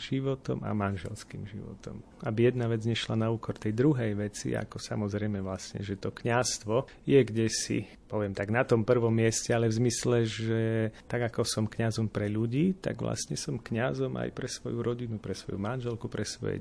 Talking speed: 185 wpm